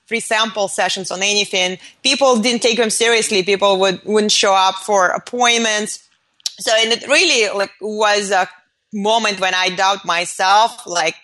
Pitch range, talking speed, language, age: 190-235 Hz, 160 wpm, English, 30-49